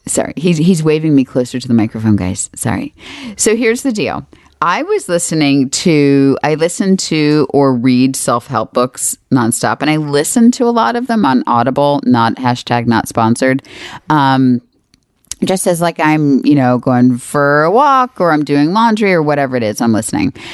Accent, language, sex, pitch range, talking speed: American, English, female, 135-210 Hz, 185 wpm